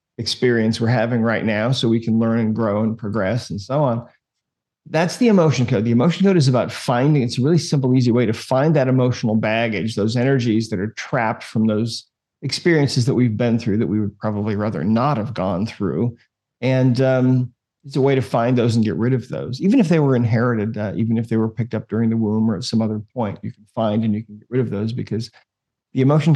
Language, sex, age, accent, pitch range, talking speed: English, male, 40-59, American, 110-130 Hz, 235 wpm